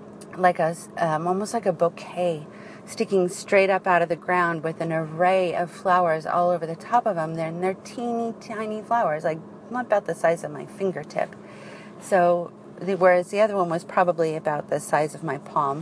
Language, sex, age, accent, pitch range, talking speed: English, female, 40-59, American, 165-200 Hz, 195 wpm